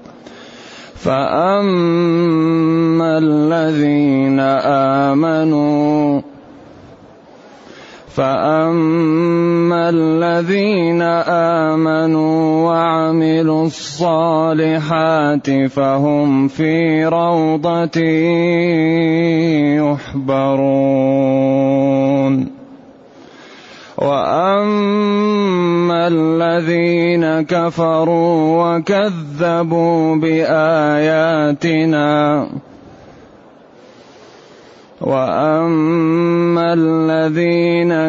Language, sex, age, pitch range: Arabic, male, 20-39, 155-170 Hz